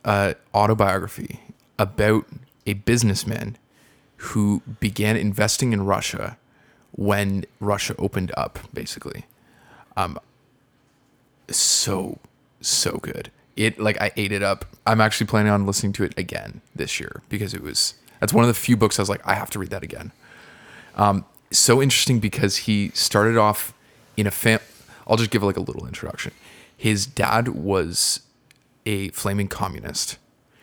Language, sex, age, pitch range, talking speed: English, male, 20-39, 100-110 Hz, 150 wpm